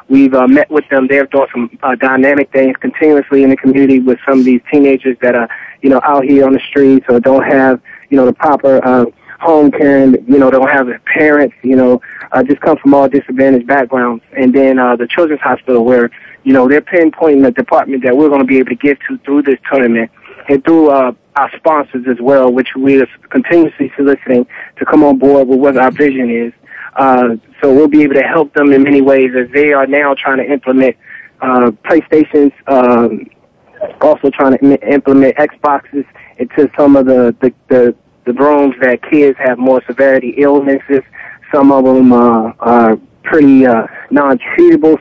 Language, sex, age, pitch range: English, male, 20-39, 130-145 Hz